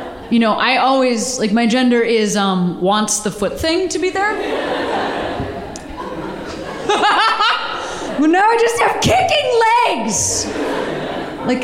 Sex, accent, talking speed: female, American, 125 wpm